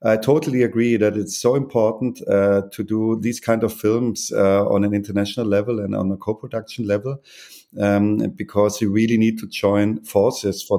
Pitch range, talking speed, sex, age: 95-110 Hz, 190 wpm, male, 50-69